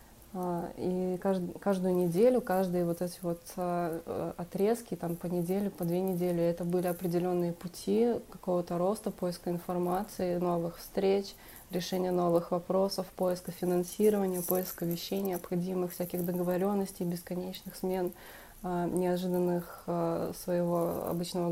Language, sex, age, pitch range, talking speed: Russian, female, 20-39, 180-195 Hz, 110 wpm